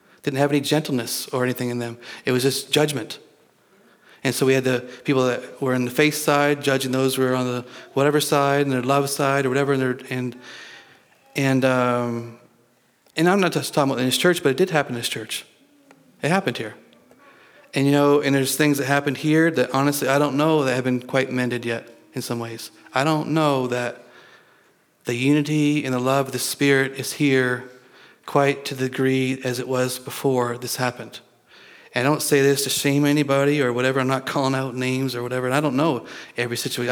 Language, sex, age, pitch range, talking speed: English, male, 40-59, 125-145 Hz, 210 wpm